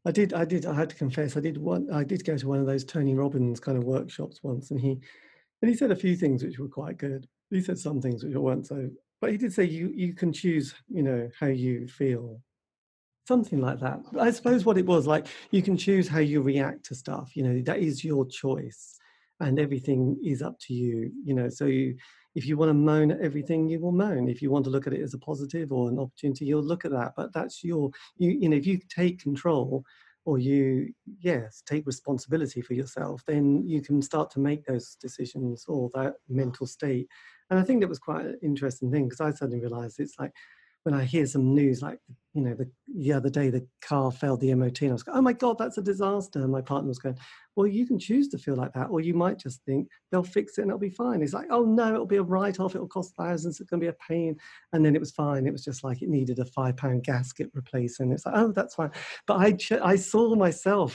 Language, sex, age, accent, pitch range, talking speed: English, male, 40-59, British, 135-175 Hz, 250 wpm